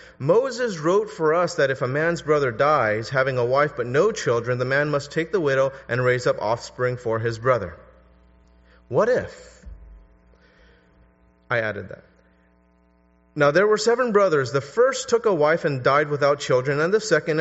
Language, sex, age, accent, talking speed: English, male, 30-49, American, 175 wpm